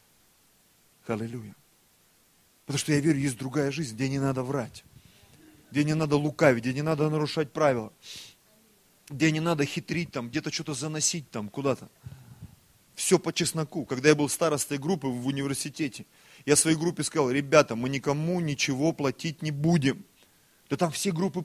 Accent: native